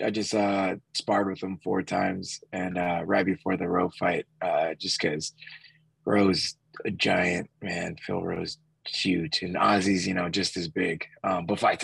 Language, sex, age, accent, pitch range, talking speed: English, male, 20-39, American, 95-110 Hz, 175 wpm